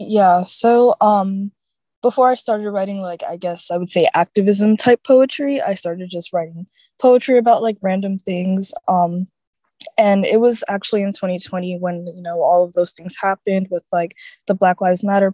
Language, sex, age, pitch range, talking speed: English, female, 20-39, 175-205 Hz, 180 wpm